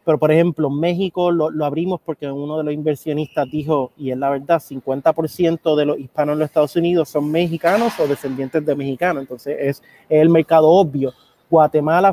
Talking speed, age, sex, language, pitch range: 185 wpm, 30-49, male, Spanish, 150-175 Hz